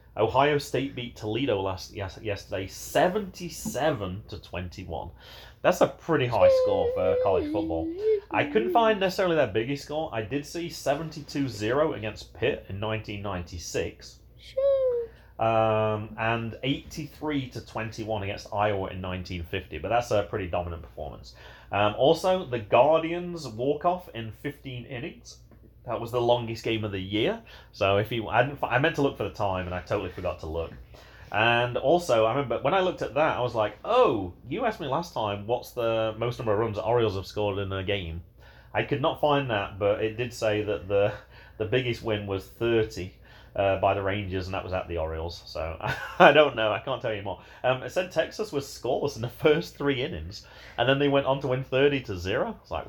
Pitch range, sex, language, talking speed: 100-140 Hz, male, English, 190 wpm